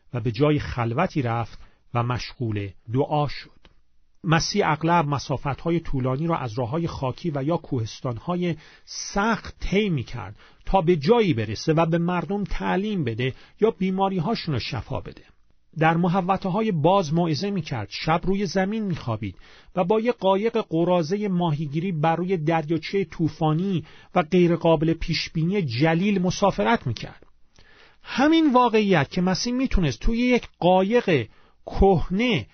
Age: 40-59